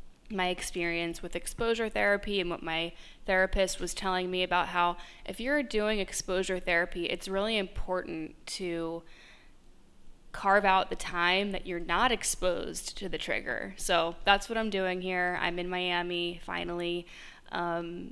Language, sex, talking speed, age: English, female, 150 wpm, 20-39